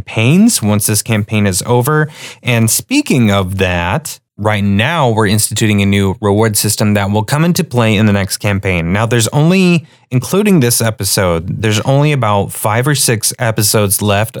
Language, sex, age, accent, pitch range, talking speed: English, male, 30-49, American, 105-130 Hz, 170 wpm